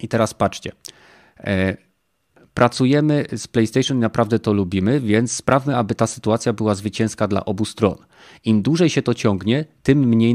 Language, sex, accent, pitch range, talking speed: Polish, male, native, 105-135 Hz, 155 wpm